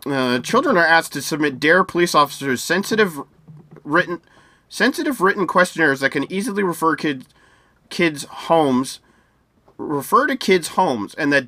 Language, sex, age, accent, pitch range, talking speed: English, male, 30-49, American, 135-165 Hz, 140 wpm